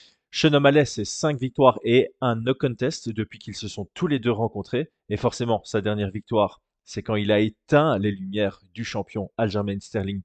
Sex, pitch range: male, 100-130 Hz